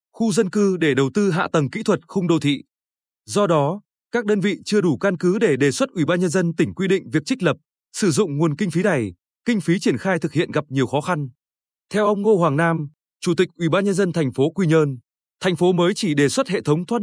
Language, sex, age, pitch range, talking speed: Vietnamese, male, 20-39, 155-200 Hz, 265 wpm